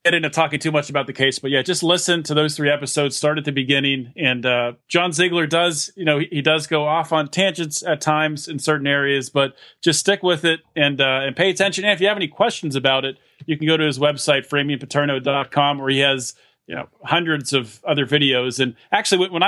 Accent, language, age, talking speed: American, English, 40-59, 235 wpm